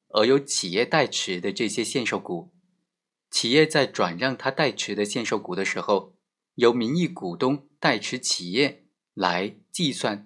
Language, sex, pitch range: Chinese, male, 105-170 Hz